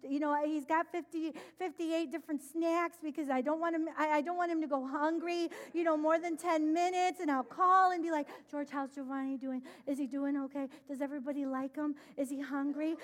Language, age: English, 40-59